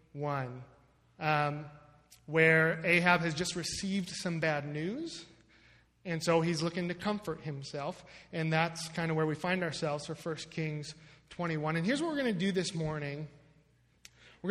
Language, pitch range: English, 155-185 Hz